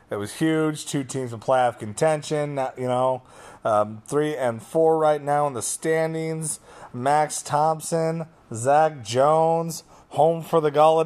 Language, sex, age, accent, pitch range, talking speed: English, male, 30-49, American, 145-200 Hz, 145 wpm